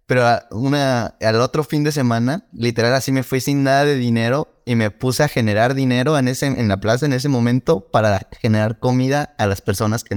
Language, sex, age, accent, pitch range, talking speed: Spanish, male, 20-39, Mexican, 110-130 Hz, 220 wpm